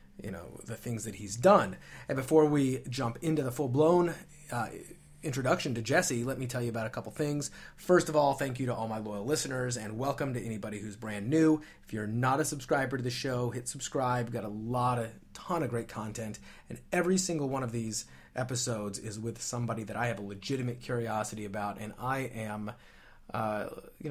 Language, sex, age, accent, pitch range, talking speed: English, male, 30-49, American, 110-145 Hz, 210 wpm